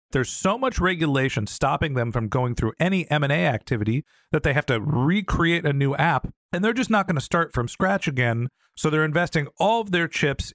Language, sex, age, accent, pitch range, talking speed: English, male, 40-59, American, 120-160 Hz, 210 wpm